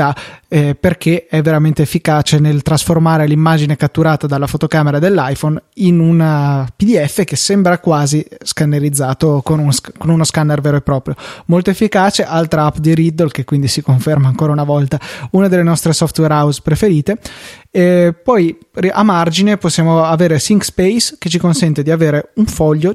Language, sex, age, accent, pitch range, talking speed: Italian, male, 20-39, native, 150-170 Hz, 160 wpm